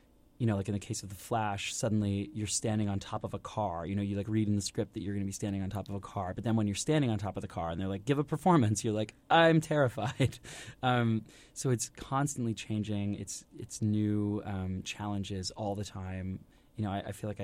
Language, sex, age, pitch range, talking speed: English, male, 20-39, 95-115 Hz, 260 wpm